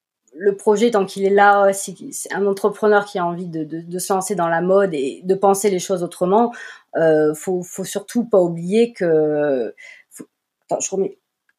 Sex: female